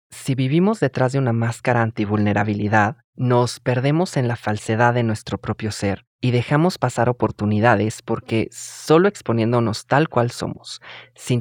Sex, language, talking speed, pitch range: male, Spanish, 140 wpm, 110-130 Hz